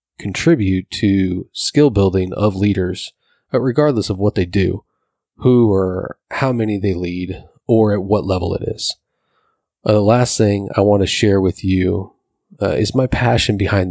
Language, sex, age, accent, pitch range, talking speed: English, male, 30-49, American, 95-115 Hz, 165 wpm